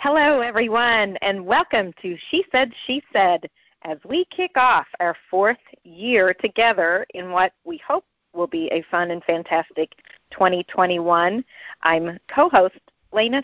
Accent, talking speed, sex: American, 140 wpm, female